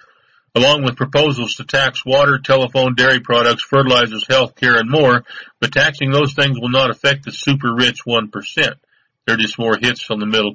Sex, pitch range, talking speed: male, 110-125 Hz, 190 wpm